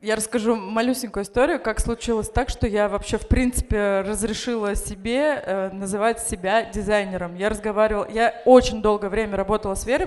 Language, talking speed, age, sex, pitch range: Russian, 155 wpm, 20-39, female, 200-240 Hz